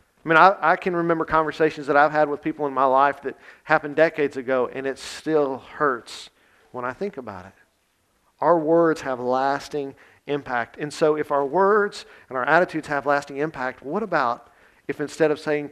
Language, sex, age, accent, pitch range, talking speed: English, male, 50-69, American, 130-150 Hz, 190 wpm